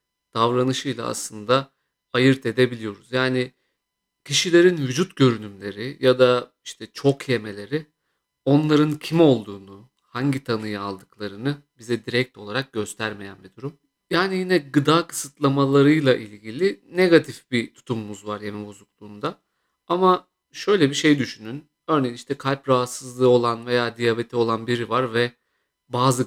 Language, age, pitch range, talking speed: Turkish, 50-69, 120-150 Hz, 120 wpm